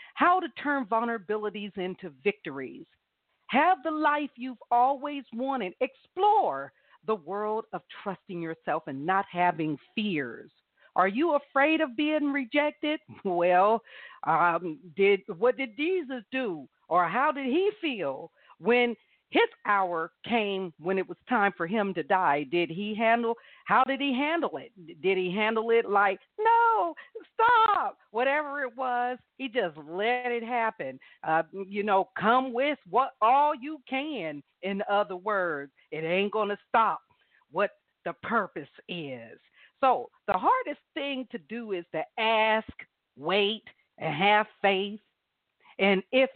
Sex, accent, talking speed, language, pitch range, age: female, American, 145 wpm, English, 195-280 Hz, 50-69